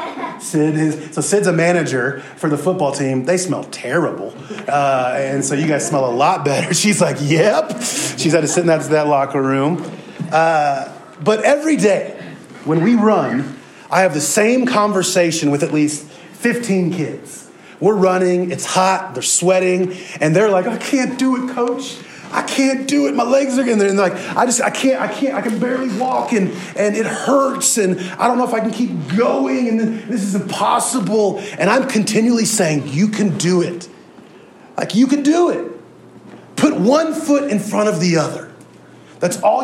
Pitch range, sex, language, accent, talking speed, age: 165-240 Hz, male, English, American, 190 wpm, 30-49